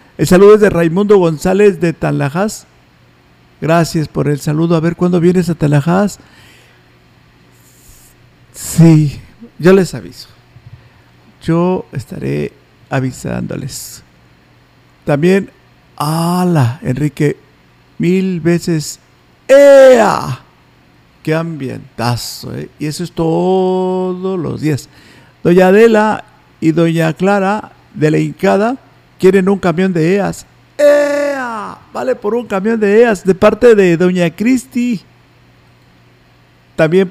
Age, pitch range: 50-69, 140-195 Hz